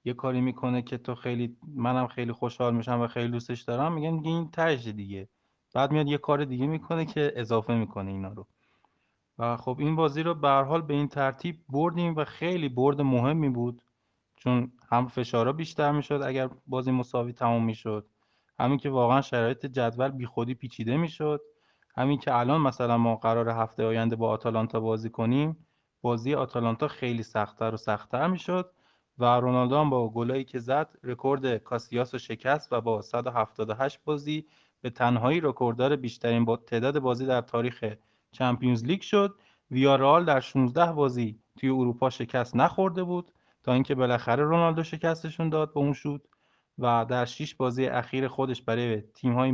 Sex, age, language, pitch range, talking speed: male, 20-39, Persian, 120-145 Hz, 165 wpm